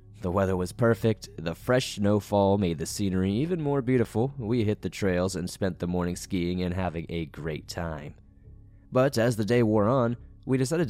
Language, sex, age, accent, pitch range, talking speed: English, male, 20-39, American, 90-110 Hz, 195 wpm